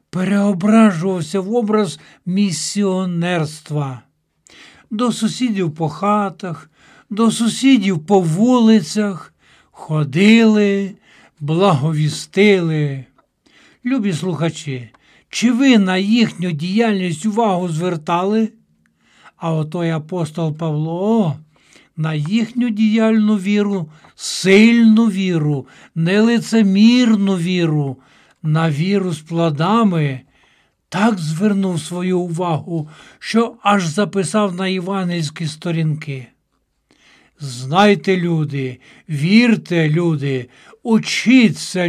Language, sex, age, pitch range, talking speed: Ukrainian, male, 60-79, 160-215 Hz, 80 wpm